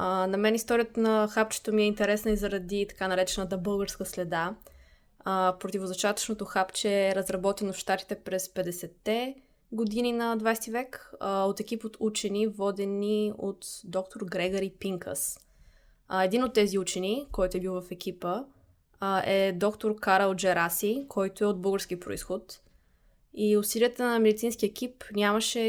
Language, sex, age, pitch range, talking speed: Bulgarian, female, 20-39, 185-215 Hz, 150 wpm